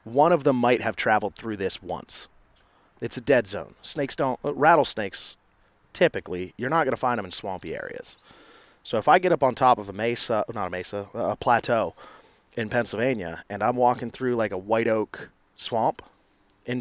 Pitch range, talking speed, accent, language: 105-145 Hz, 190 wpm, American, English